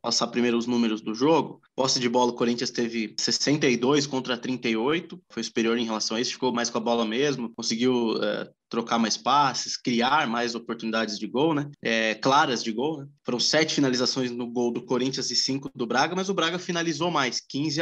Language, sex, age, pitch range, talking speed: Portuguese, male, 20-39, 120-145 Hz, 195 wpm